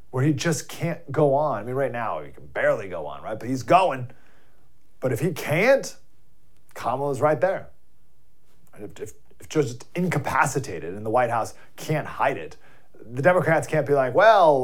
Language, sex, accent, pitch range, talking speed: English, male, American, 105-155 Hz, 175 wpm